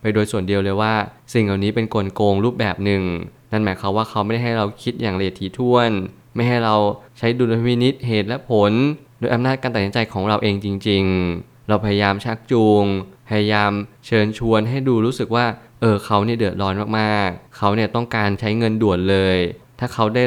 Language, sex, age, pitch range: Thai, male, 20-39, 100-120 Hz